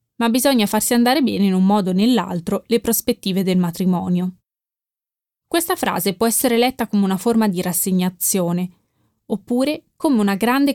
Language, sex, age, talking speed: Italian, female, 20-39, 155 wpm